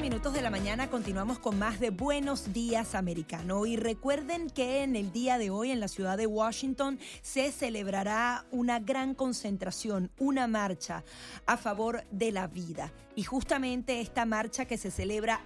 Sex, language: female, Spanish